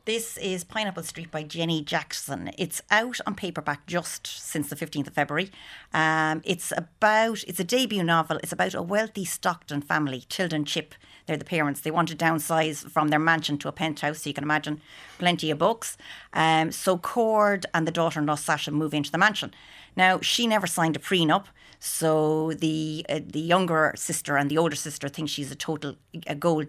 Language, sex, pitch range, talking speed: English, female, 150-175 Hz, 190 wpm